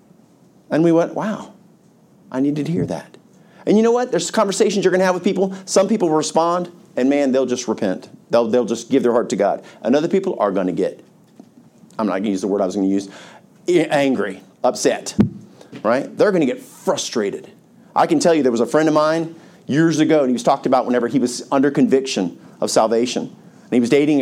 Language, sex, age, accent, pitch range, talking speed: English, male, 40-59, American, 130-185 Hz, 230 wpm